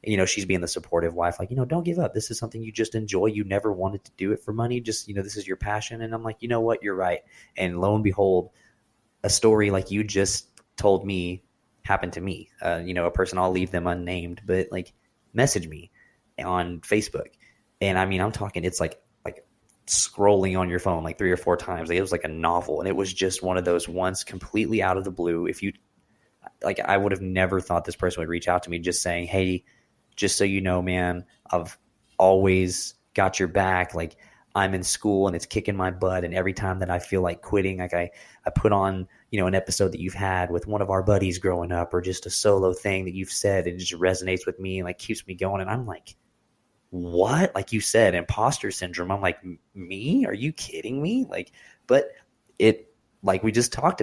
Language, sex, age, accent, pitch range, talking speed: English, male, 20-39, American, 90-105 Hz, 235 wpm